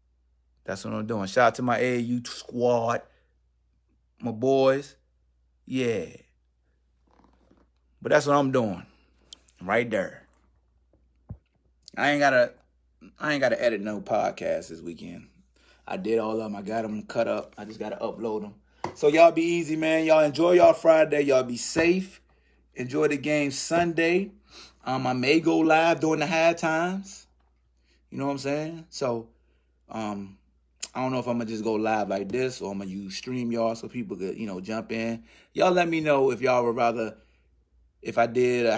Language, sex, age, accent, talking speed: English, male, 30-49, American, 175 wpm